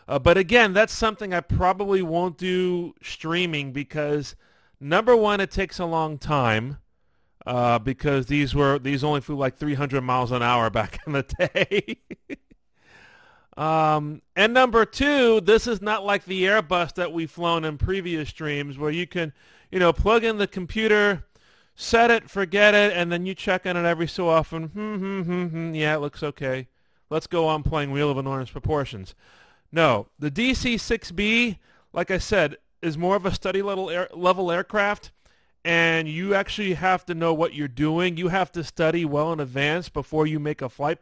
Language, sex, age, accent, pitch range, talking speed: English, male, 40-59, American, 145-185 Hz, 175 wpm